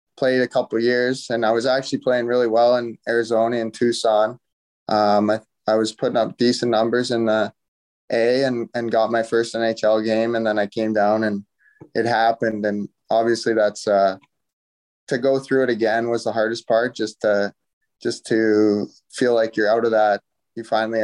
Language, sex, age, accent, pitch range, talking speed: English, male, 20-39, American, 105-120 Hz, 190 wpm